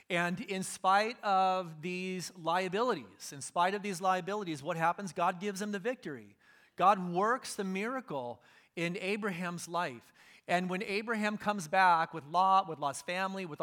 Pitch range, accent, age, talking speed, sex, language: 160-200 Hz, American, 30-49, 160 wpm, male, English